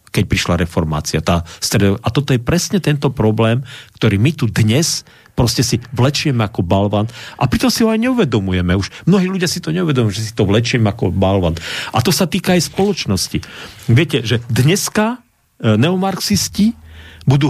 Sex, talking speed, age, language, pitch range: male, 160 wpm, 40-59, Slovak, 115-180 Hz